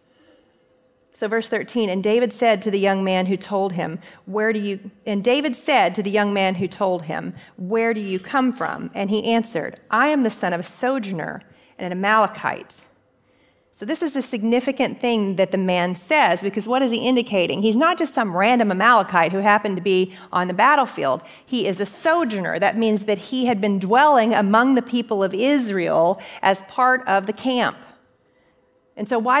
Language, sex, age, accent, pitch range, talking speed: English, female, 40-59, American, 195-255 Hz, 195 wpm